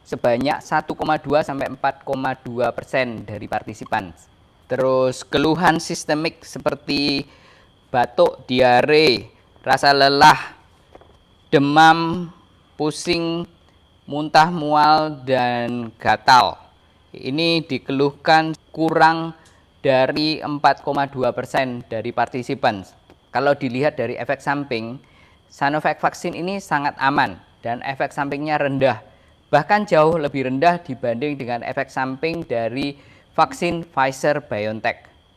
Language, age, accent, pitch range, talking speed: Indonesian, 20-39, native, 125-150 Hz, 90 wpm